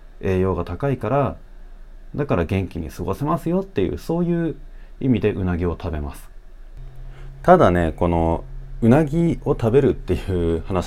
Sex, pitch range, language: male, 85-130 Hz, Japanese